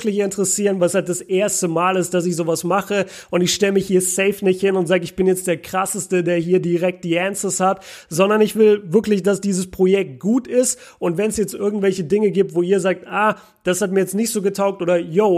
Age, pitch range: 30-49, 185-220 Hz